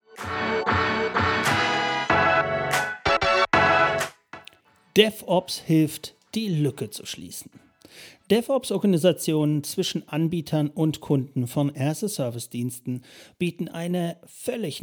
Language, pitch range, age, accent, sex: German, 135-180 Hz, 40-59, German, male